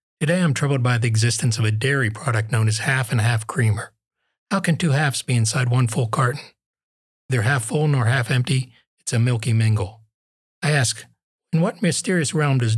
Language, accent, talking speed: English, American, 190 wpm